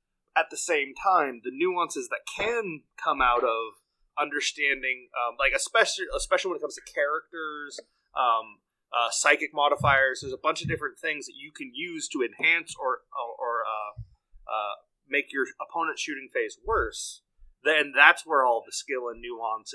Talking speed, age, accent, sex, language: 170 wpm, 30-49, American, male, English